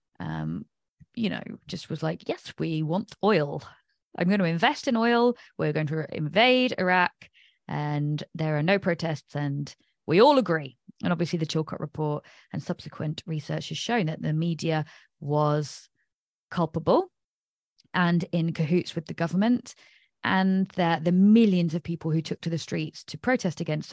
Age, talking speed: 20-39, 160 wpm